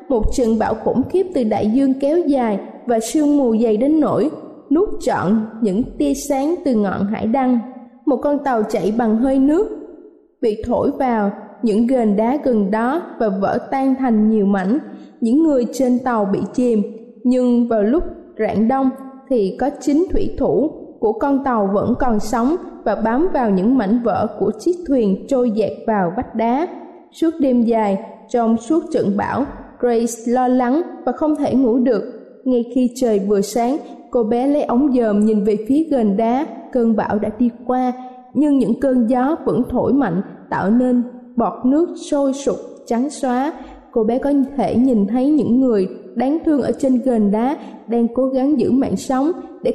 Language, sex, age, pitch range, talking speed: Vietnamese, female, 20-39, 225-275 Hz, 185 wpm